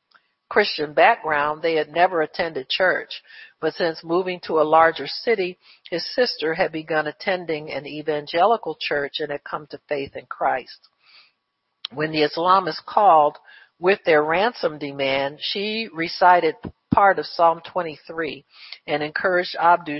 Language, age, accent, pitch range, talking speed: English, 50-69, American, 145-170 Hz, 140 wpm